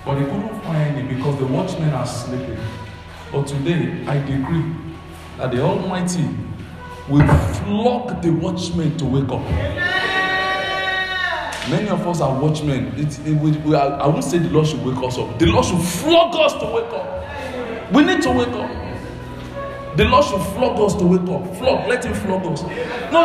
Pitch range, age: 130-190 Hz, 40-59